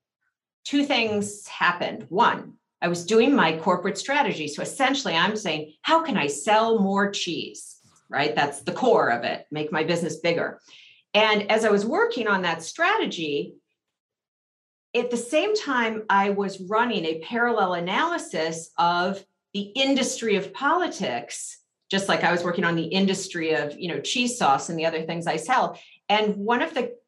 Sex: female